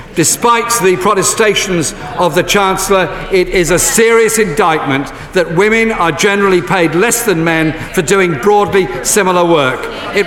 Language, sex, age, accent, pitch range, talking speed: English, male, 50-69, British, 195-255 Hz, 145 wpm